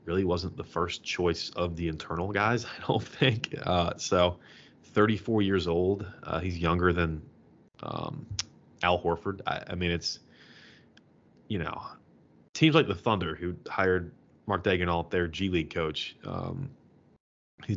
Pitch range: 85-100 Hz